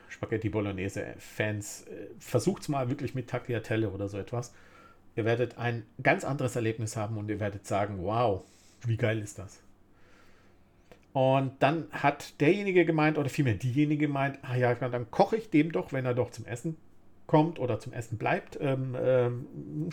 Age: 50-69